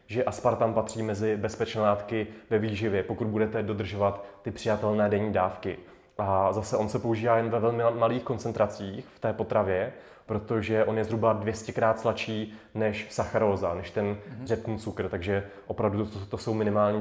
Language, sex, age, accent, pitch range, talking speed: Czech, male, 20-39, native, 105-115 Hz, 165 wpm